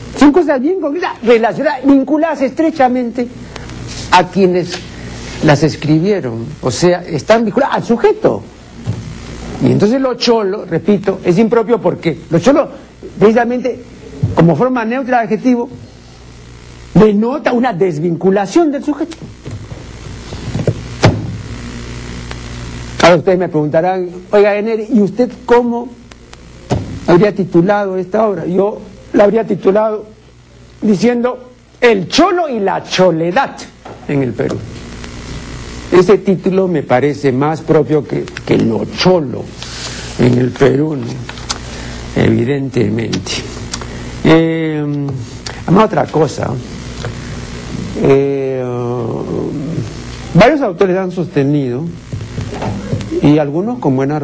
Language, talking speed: Spanish, 95 wpm